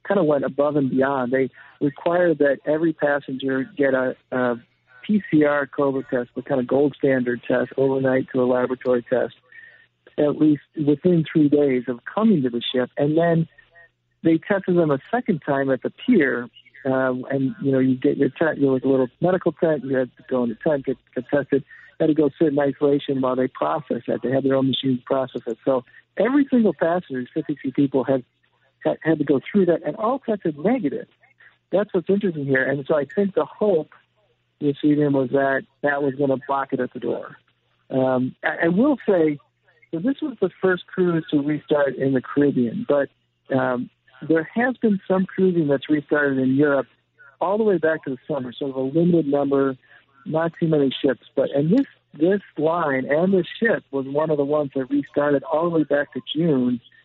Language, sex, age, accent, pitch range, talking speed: English, male, 50-69, American, 130-165 Hz, 205 wpm